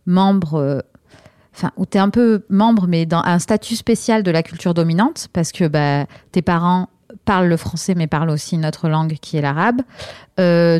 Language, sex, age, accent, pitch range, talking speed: French, female, 30-49, French, 160-190 Hz, 190 wpm